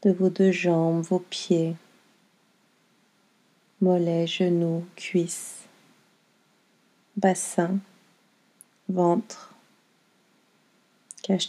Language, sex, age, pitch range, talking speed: French, female, 40-59, 180-205 Hz, 65 wpm